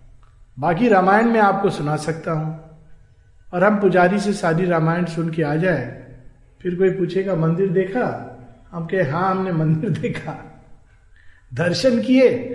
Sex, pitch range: male, 150-210 Hz